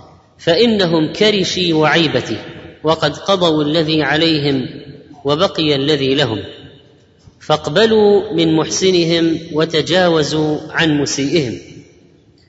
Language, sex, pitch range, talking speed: Arabic, female, 150-195 Hz, 75 wpm